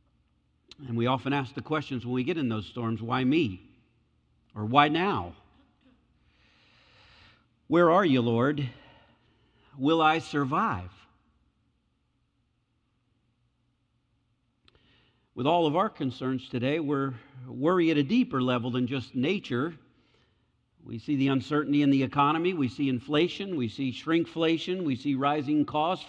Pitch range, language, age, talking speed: 120-150 Hz, English, 50-69, 130 wpm